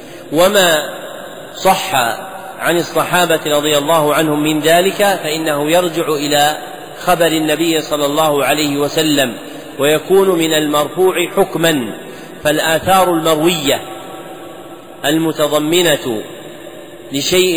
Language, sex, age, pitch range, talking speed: Arabic, male, 40-59, 145-165 Hz, 90 wpm